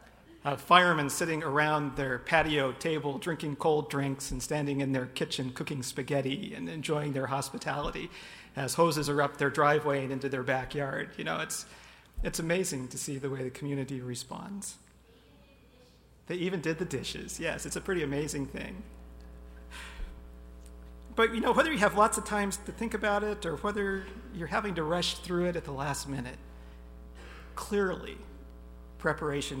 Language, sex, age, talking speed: English, male, 50-69, 165 wpm